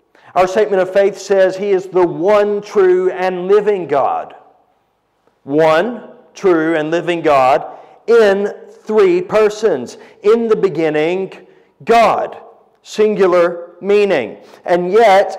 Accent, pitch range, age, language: American, 165-225 Hz, 40-59, English